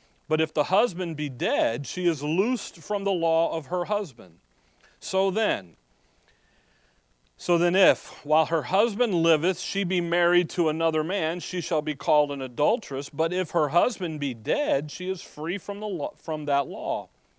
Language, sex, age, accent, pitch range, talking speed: English, male, 40-59, American, 135-170 Hz, 175 wpm